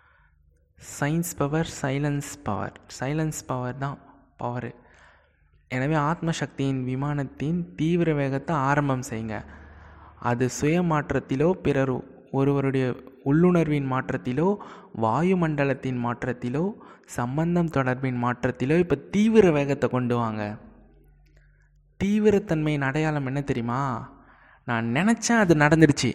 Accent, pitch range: native, 120-155 Hz